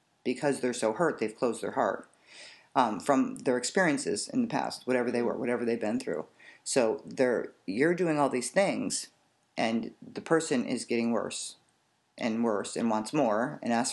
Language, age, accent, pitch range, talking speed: English, 40-59, American, 125-160 Hz, 180 wpm